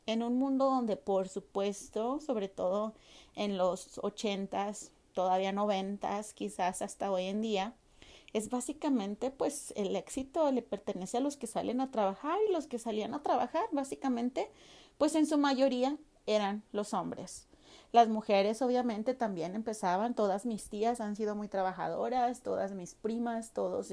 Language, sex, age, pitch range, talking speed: Spanish, female, 30-49, 210-270 Hz, 155 wpm